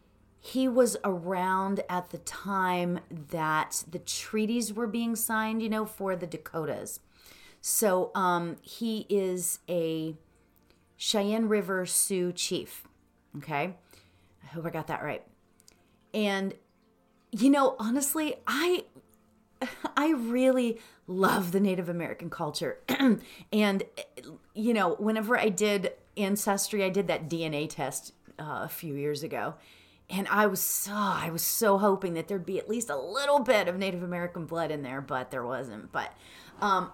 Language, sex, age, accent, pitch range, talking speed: English, female, 30-49, American, 165-215 Hz, 140 wpm